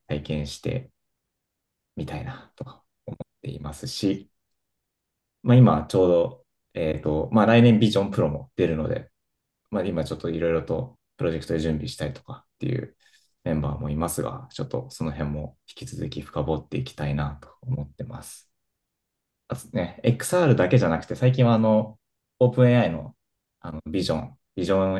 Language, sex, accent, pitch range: Japanese, male, native, 80-115 Hz